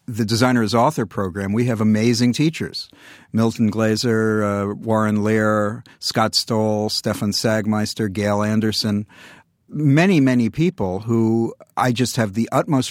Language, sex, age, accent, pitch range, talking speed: English, male, 50-69, American, 105-125 Hz, 135 wpm